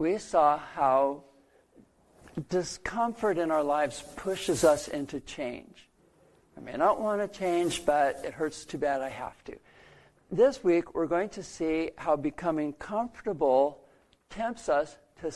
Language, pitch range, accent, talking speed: English, 145-190 Hz, American, 145 wpm